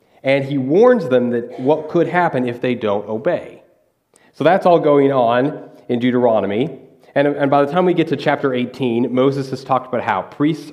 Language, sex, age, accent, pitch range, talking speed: English, male, 30-49, American, 115-160 Hz, 195 wpm